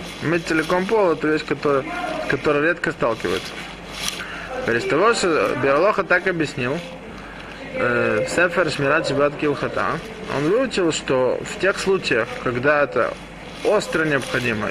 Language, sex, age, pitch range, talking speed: Russian, male, 20-39, 140-185 Hz, 115 wpm